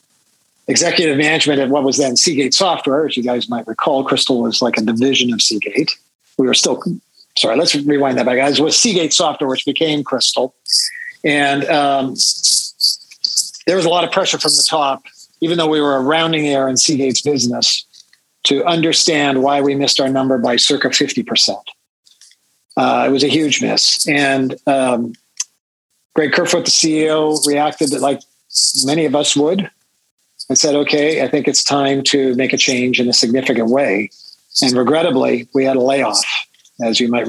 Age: 40-59